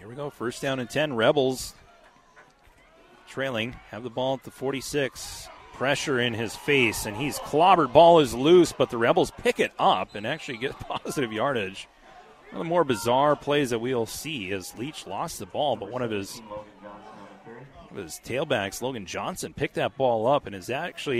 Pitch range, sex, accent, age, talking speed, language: 110-145 Hz, male, American, 30-49, 185 wpm, English